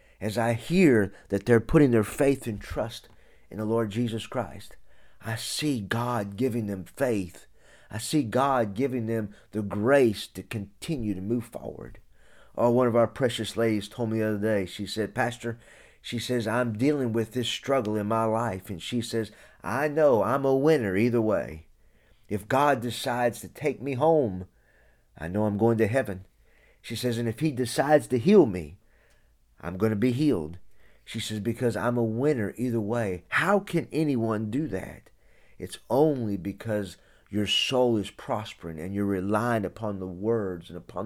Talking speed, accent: 180 wpm, American